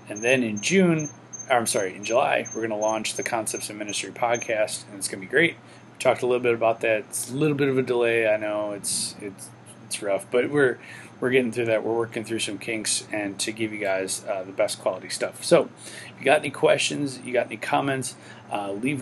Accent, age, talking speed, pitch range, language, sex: American, 30-49, 245 wpm, 110-130 Hz, English, male